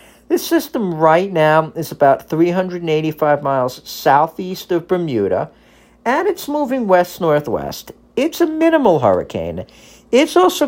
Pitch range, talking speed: 155-225 Hz, 120 wpm